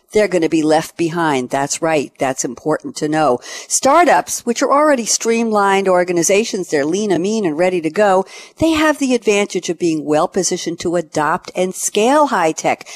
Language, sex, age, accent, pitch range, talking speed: English, female, 60-79, American, 165-225 Hz, 185 wpm